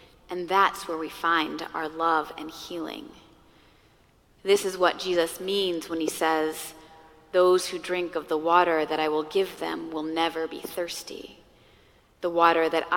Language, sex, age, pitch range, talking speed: English, female, 30-49, 160-190 Hz, 160 wpm